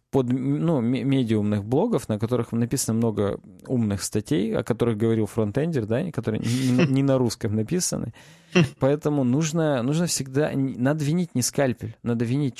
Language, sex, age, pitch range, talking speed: Russian, male, 20-39, 110-135 Hz, 150 wpm